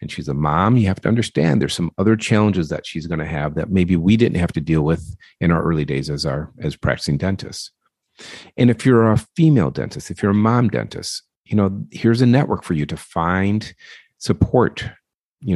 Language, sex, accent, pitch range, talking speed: English, male, American, 85-110 Hz, 215 wpm